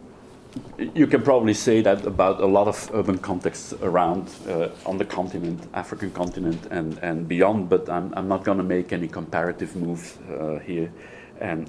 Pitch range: 95-115 Hz